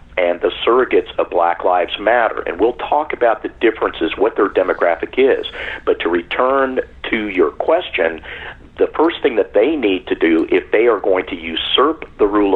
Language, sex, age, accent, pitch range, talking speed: English, male, 50-69, American, 300-440 Hz, 185 wpm